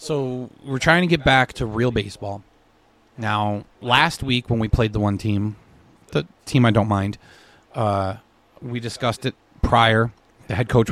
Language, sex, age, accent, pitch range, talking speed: English, male, 30-49, American, 110-130 Hz, 170 wpm